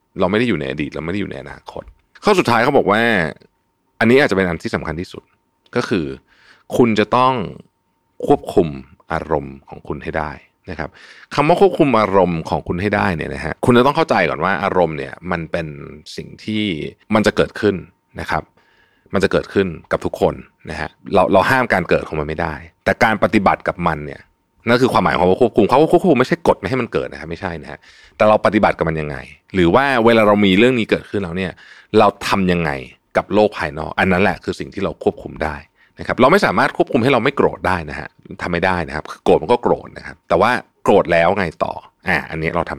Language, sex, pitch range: Thai, male, 80-110 Hz